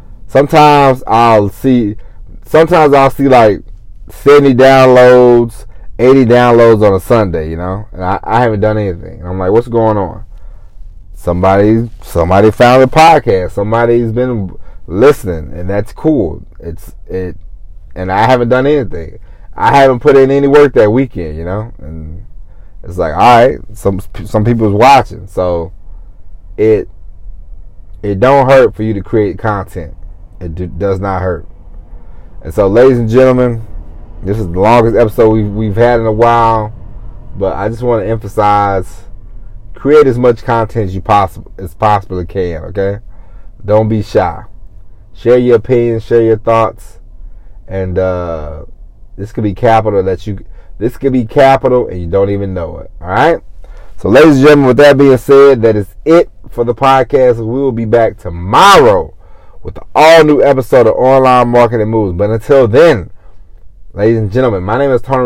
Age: 30-49